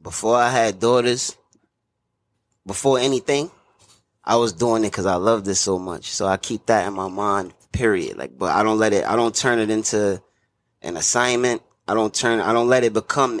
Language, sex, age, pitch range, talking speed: English, male, 20-39, 100-125 Hz, 200 wpm